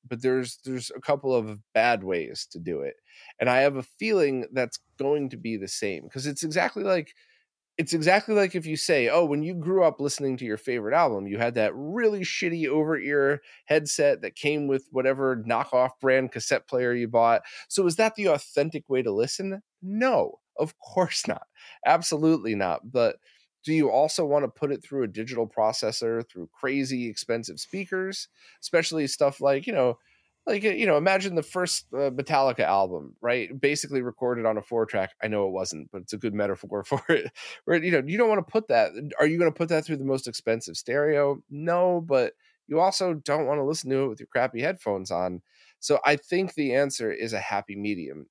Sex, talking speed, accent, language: male, 205 wpm, American, English